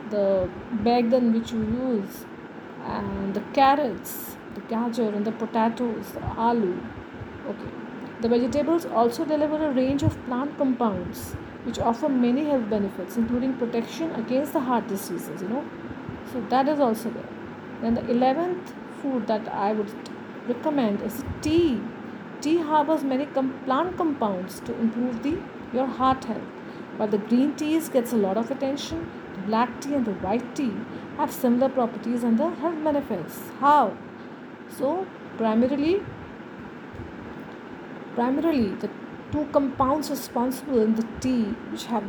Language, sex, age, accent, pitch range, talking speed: English, female, 50-69, Indian, 225-280 Hz, 145 wpm